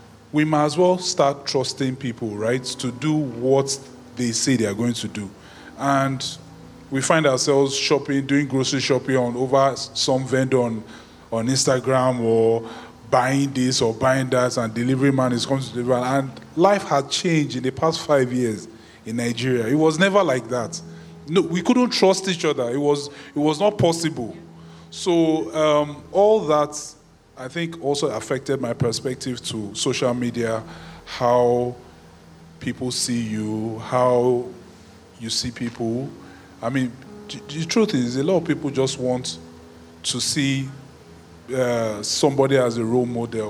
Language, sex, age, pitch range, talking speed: English, male, 20-39, 115-145 Hz, 155 wpm